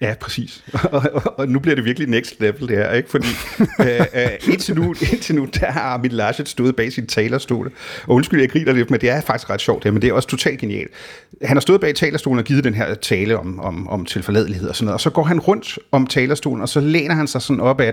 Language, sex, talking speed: Danish, male, 270 wpm